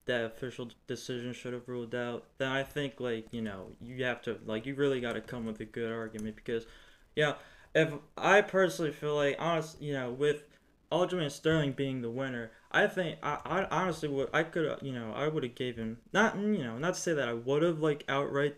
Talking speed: 230 wpm